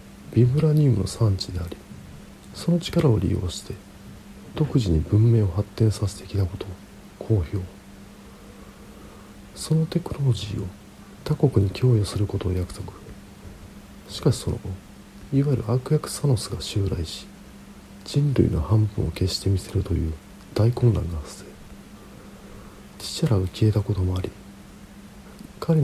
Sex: male